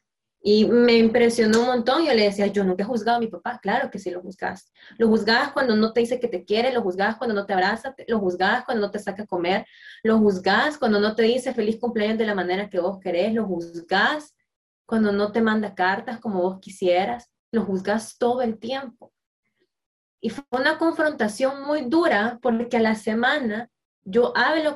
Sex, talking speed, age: female, 205 wpm, 20-39